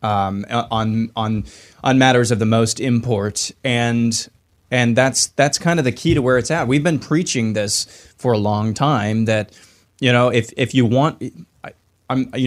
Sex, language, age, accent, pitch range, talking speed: male, English, 20-39, American, 110-140 Hz, 190 wpm